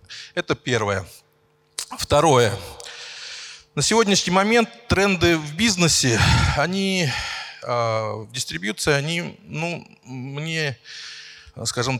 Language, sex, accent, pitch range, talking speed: Russian, male, native, 115-170 Hz, 85 wpm